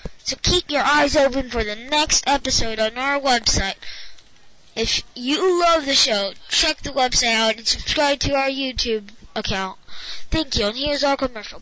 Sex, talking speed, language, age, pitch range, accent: female, 170 wpm, English, 10-29, 220-290 Hz, American